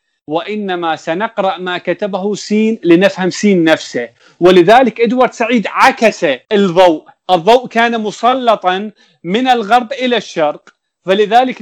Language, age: Arabic, 40-59